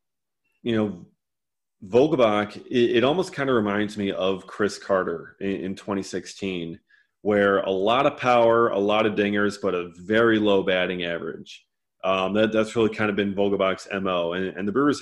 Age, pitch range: 30-49, 95-115 Hz